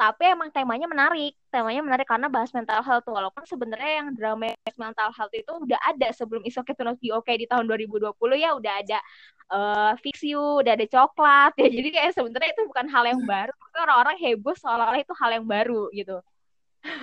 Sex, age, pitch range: female, 20-39, 220-265 Hz